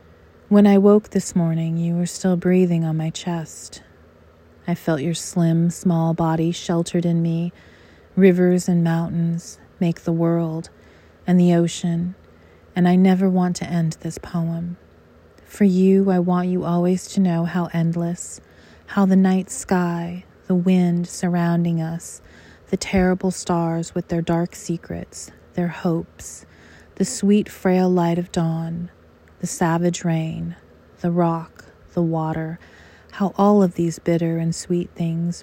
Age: 30-49